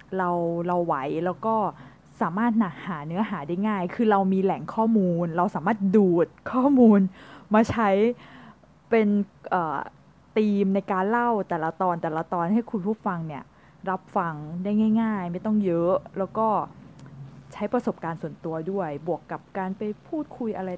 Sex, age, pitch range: female, 20-39, 170-225 Hz